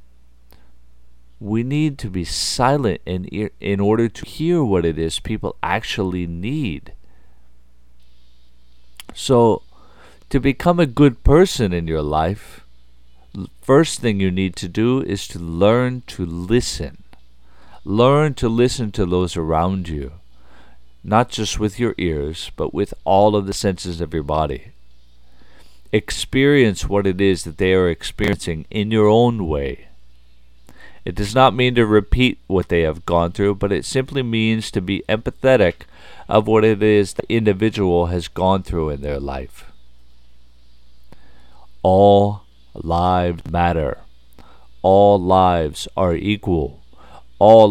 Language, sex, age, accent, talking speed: English, male, 50-69, American, 135 wpm